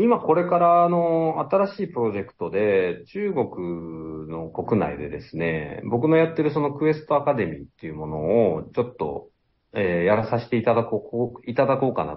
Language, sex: Japanese, male